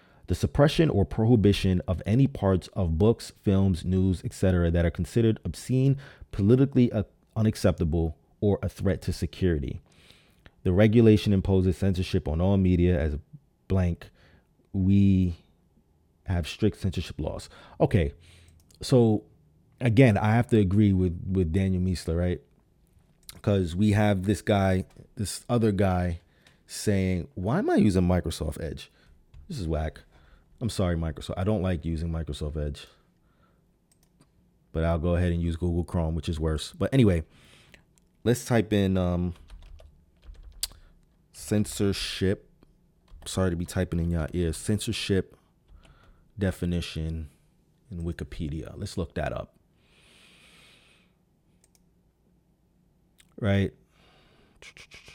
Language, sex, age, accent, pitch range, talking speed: English, male, 30-49, American, 85-105 Hz, 120 wpm